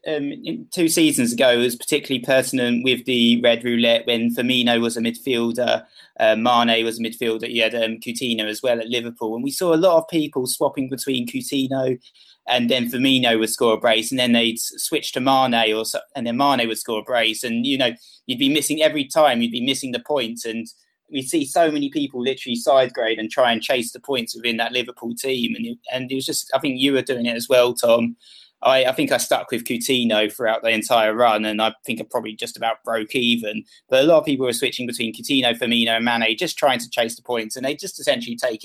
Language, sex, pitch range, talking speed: English, male, 115-135 Hz, 230 wpm